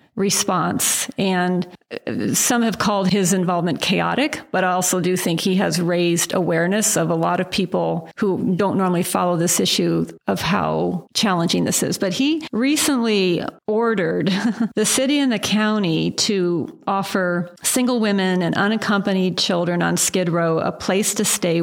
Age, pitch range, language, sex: 40-59, 175-210 Hz, English, female